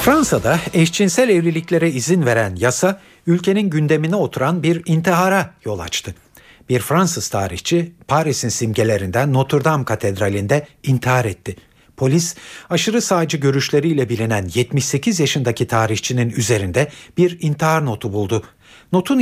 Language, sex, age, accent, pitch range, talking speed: Turkish, male, 60-79, native, 115-165 Hz, 115 wpm